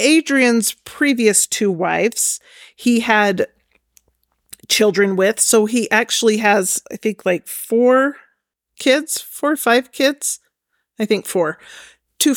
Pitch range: 205-250 Hz